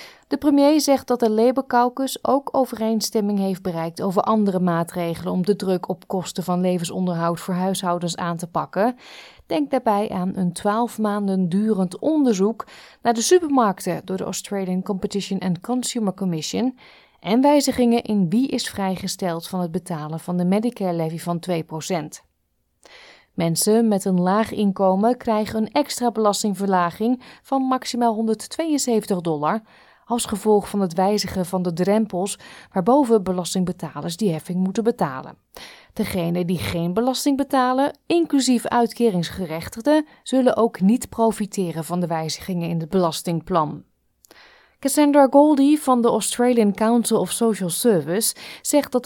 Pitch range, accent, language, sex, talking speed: 180-240 Hz, Dutch, Dutch, female, 140 wpm